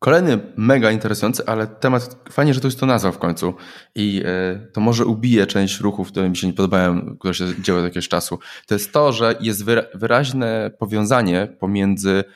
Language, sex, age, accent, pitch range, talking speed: Polish, male, 20-39, native, 95-110 Hz, 185 wpm